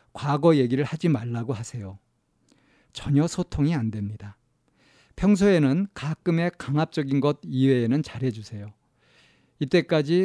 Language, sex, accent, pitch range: Korean, male, native, 120-155 Hz